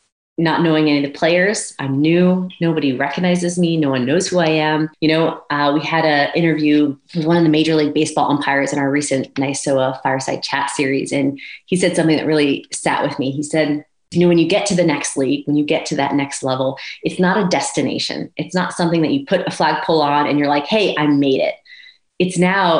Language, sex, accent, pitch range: English, female, American, 145-185 Hz